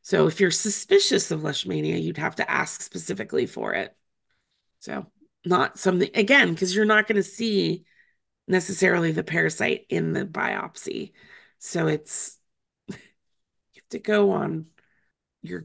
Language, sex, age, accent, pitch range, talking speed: English, female, 30-49, American, 175-230 Hz, 140 wpm